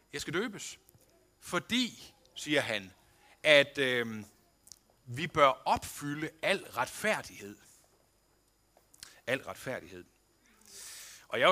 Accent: native